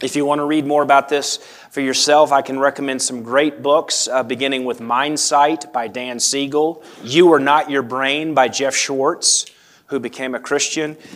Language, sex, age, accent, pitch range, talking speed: English, male, 30-49, American, 120-150 Hz, 190 wpm